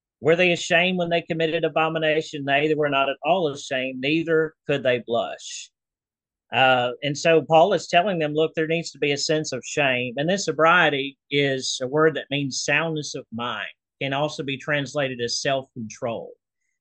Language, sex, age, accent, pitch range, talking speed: English, male, 40-59, American, 130-155 Hz, 180 wpm